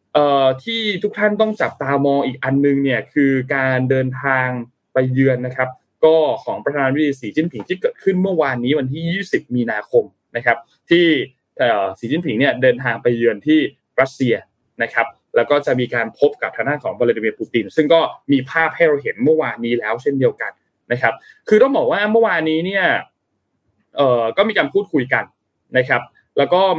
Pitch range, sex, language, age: 125-180 Hz, male, Thai, 20-39